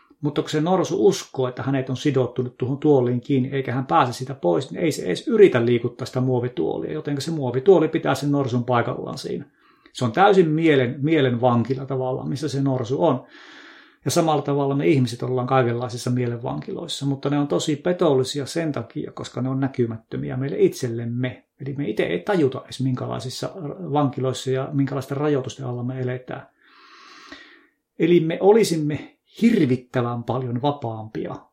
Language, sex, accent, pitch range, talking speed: Finnish, male, native, 125-150 Hz, 160 wpm